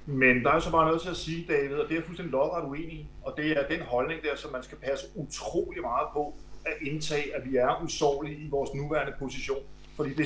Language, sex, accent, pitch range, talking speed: Danish, male, native, 135-160 Hz, 245 wpm